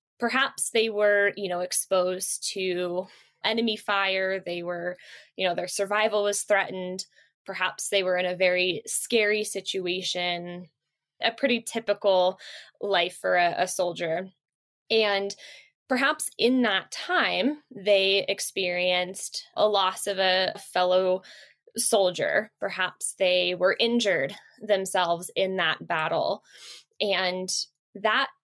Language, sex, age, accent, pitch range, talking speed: English, female, 10-29, American, 185-230 Hz, 120 wpm